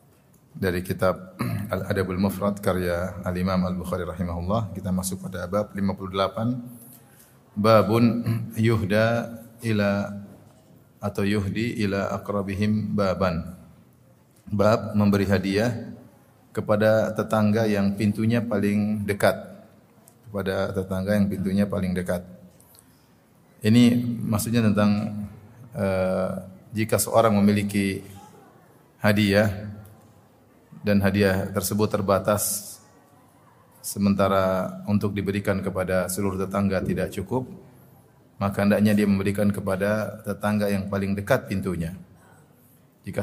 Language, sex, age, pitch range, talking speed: Indonesian, male, 30-49, 95-110 Hz, 95 wpm